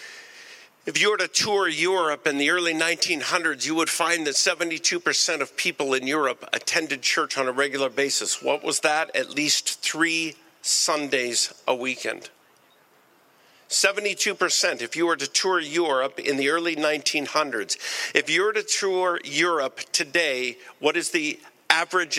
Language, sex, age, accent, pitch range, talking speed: English, male, 50-69, American, 150-250 Hz, 150 wpm